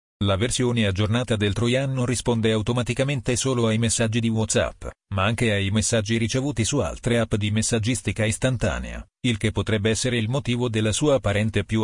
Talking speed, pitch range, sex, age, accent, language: 170 wpm, 105-125 Hz, male, 40-59, native, Italian